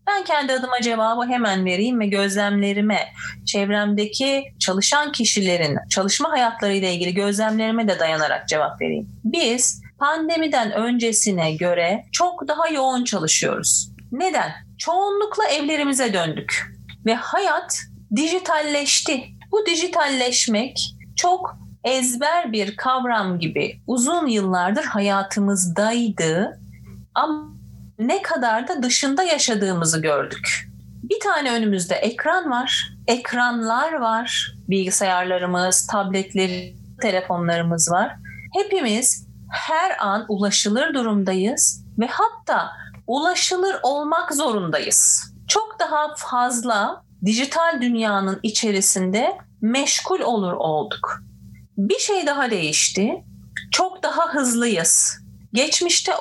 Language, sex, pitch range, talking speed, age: Turkish, female, 200-300 Hz, 95 wpm, 40-59